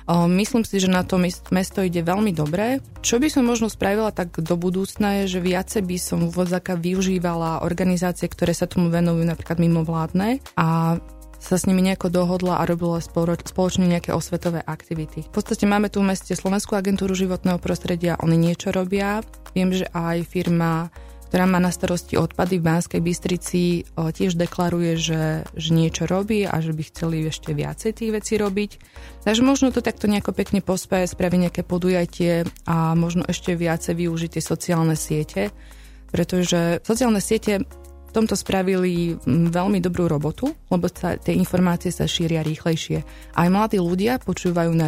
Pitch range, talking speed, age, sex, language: 165-190 Hz, 160 wpm, 20-39, female, Slovak